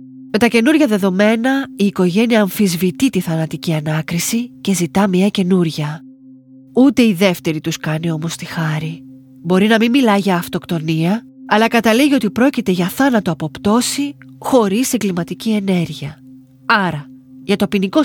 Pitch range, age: 170-235 Hz, 30-49